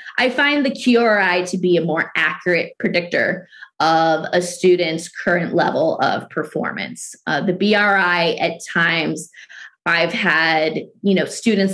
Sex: female